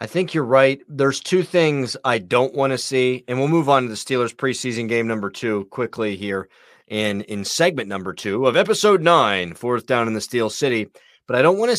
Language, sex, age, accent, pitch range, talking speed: English, male, 30-49, American, 120-155 Hz, 225 wpm